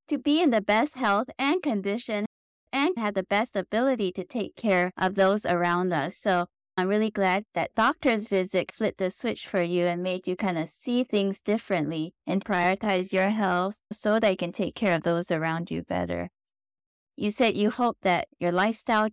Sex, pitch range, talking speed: female, 175-215 Hz, 195 wpm